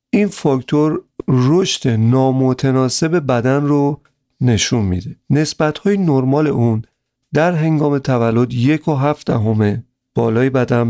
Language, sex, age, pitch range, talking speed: Persian, male, 50-69, 120-145 Hz, 110 wpm